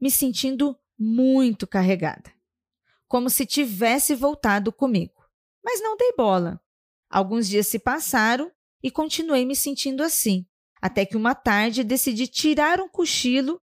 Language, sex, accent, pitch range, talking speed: Portuguese, female, Brazilian, 200-275 Hz, 130 wpm